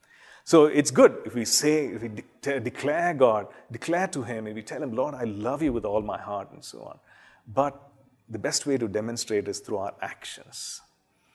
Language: English